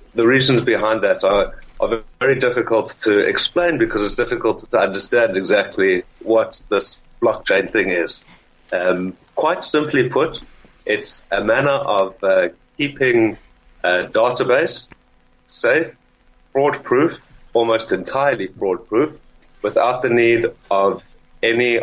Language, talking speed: English, 120 wpm